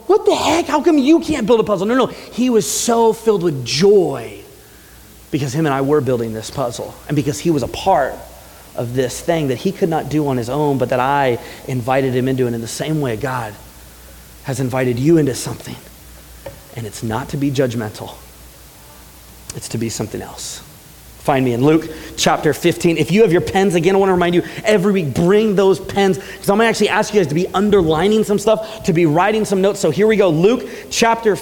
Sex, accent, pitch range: male, American, 155-235 Hz